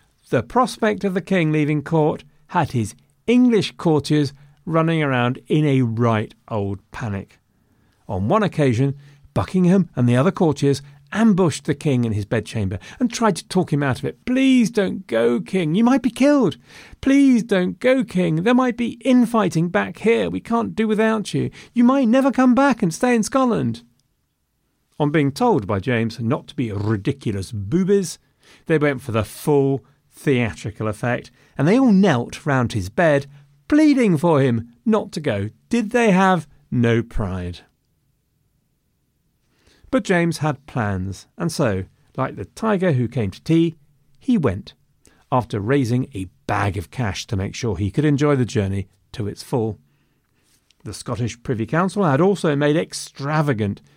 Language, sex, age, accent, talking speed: English, male, 40-59, British, 165 wpm